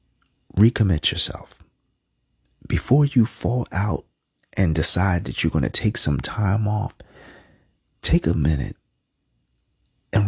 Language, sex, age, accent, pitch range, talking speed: English, male, 40-59, American, 85-110 Hz, 115 wpm